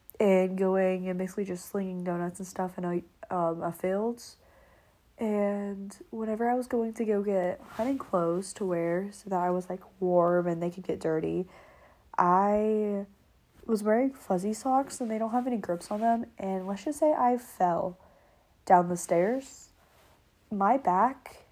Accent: American